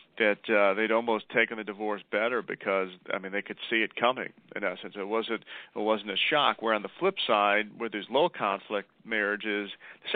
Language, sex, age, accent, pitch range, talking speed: English, male, 40-59, American, 105-115 Hz, 205 wpm